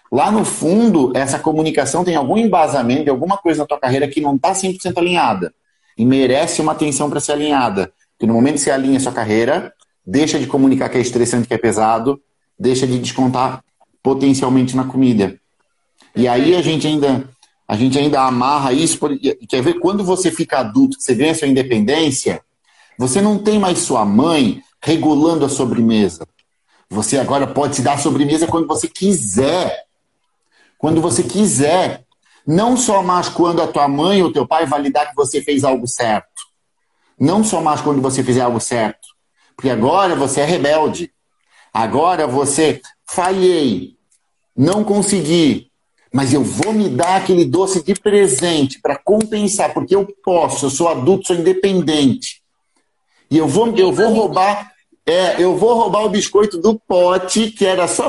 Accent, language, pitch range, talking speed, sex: Brazilian, Portuguese, 135-185 Hz, 165 wpm, male